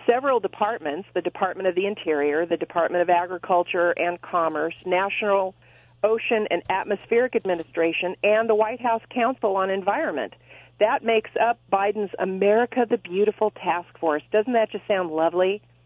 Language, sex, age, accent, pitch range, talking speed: English, female, 40-59, American, 170-210 Hz, 150 wpm